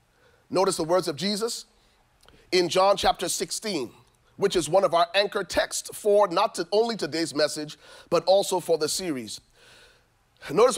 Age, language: 30-49, English